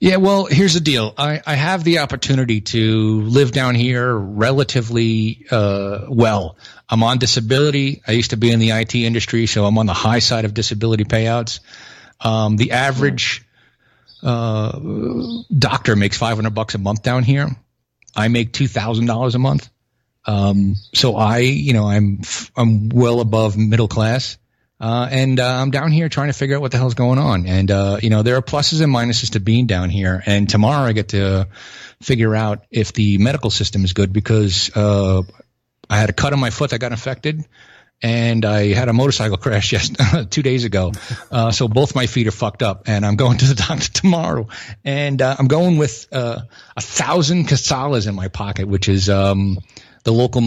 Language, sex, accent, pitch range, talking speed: English, male, American, 105-130 Hz, 190 wpm